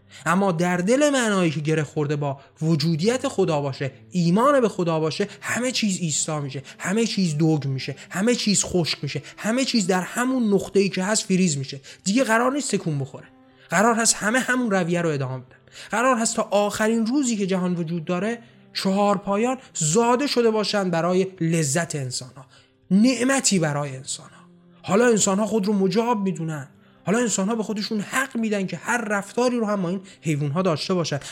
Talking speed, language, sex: 180 wpm, Persian, male